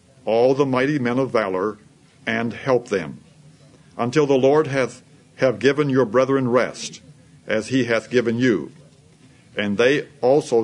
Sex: male